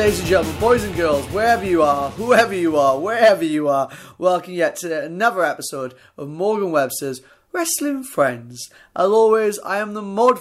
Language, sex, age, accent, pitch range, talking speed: English, male, 30-49, British, 140-185 Hz, 180 wpm